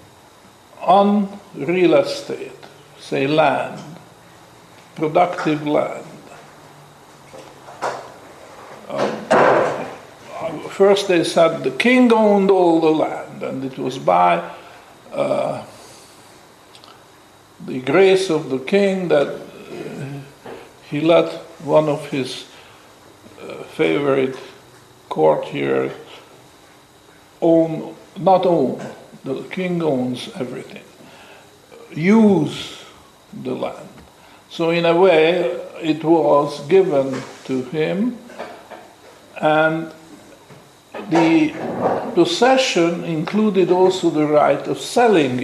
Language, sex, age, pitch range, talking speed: English, male, 60-79, 150-200 Hz, 85 wpm